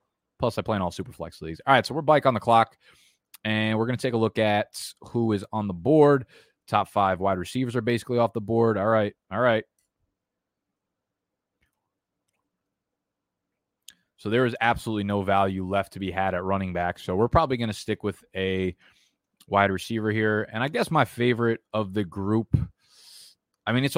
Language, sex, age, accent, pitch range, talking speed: English, male, 20-39, American, 95-120 Hz, 190 wpm